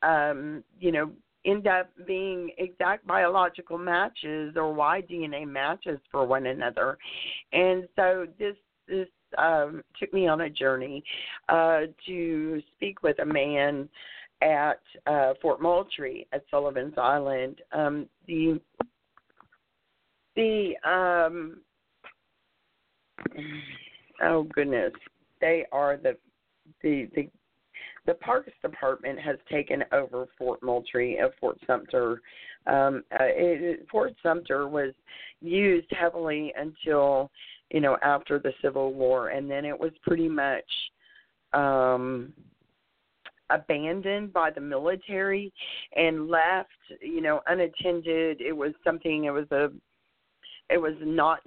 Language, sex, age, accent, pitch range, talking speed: English, female, 40-59, American, 140-175 Hz, 115 wpm